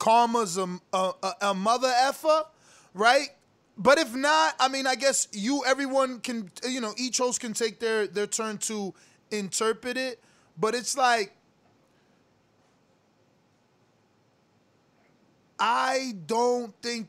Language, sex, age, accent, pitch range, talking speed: English, male, 20-39, American, 185-235 Hz, 125 wpm